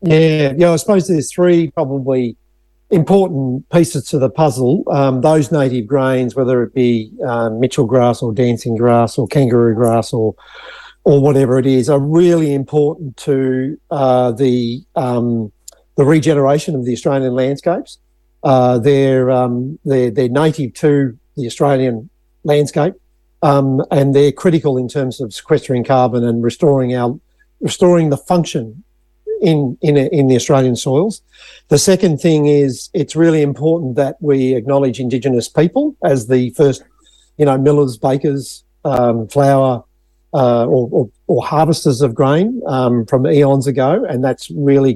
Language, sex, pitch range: English, male, 125-150 Hz